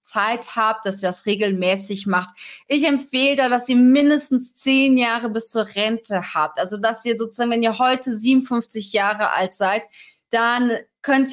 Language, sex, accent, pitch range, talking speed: German, female, German, 225-270 Hz, 170 wpm